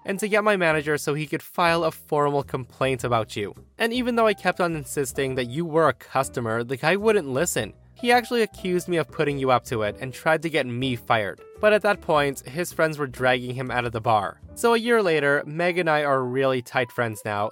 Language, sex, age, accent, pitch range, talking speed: English, male, 20-39, American, 125-175 Hz, 245 wpm